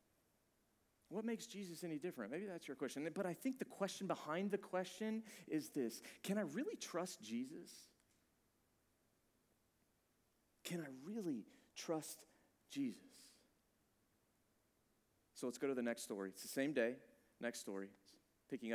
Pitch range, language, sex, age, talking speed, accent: 125-200 Hz, English, male, 40-59, 140 wpm, American